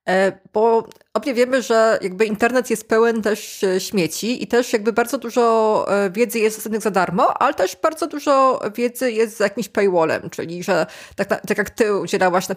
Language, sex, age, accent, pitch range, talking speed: Polish, female, 20-39, native, 190-230 Hz, 185 wpm